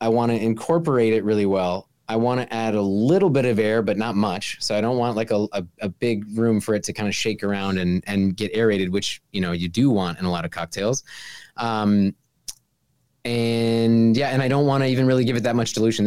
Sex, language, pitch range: male, English, 95-115 Hz